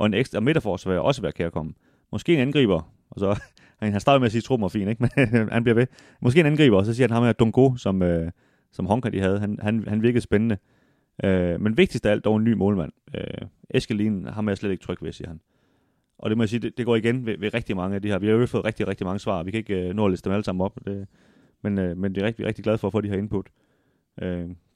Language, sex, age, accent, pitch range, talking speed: Danish, male, 30-49, native, 95-115 Hz, 295 wpm